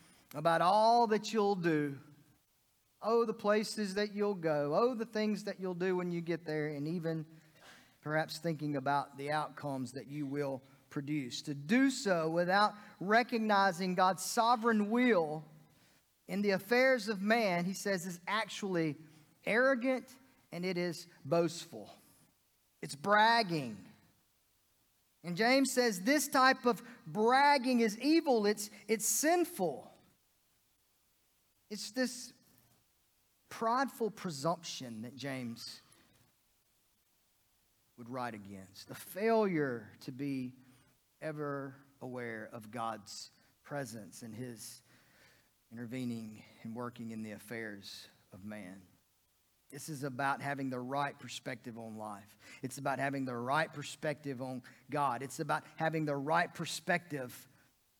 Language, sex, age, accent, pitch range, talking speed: English, male, 40-59, American, 125-205 Hz, 125 wpm